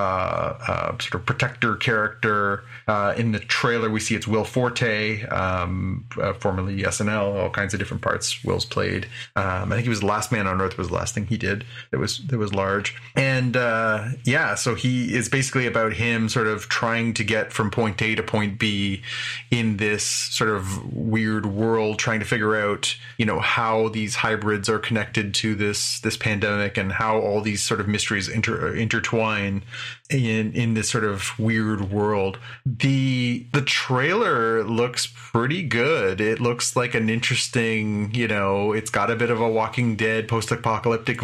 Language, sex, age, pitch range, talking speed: English, male, 30-49, 105-120 Hz, 185 wpm